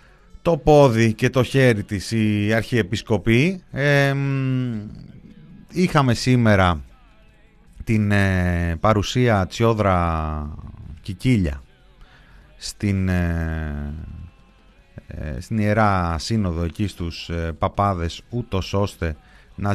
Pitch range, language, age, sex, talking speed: 90-115 Hz, Greek, 30-49, male, 85 wpm